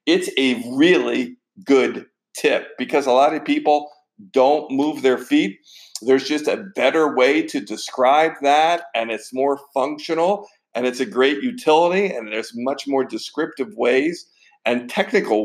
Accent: American